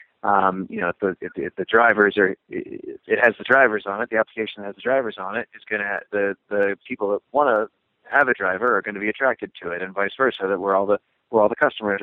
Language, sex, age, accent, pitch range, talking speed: English, male, 30-49, American, 100-110 Hz, 280 wpm